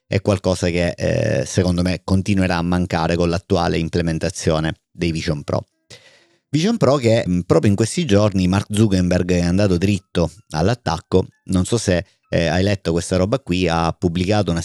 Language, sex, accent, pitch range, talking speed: Italian, male, native, 85-100 Hz, 165 wpm